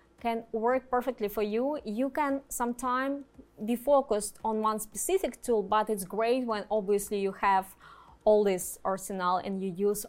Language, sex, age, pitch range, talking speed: English, female, 20-39, 200-240 Hz, 160 wpm